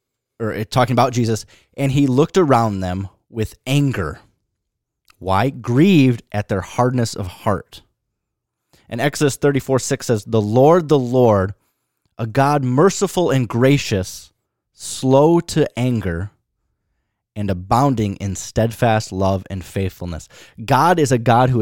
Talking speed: 130 wpm